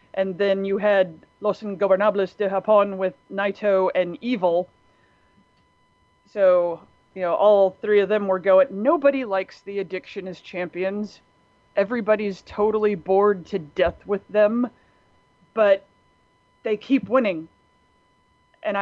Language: English